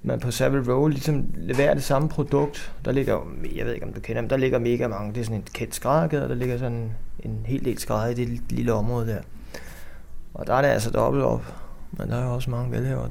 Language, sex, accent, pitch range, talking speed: Danish, male, native, 110-135 Hz, 250 wpm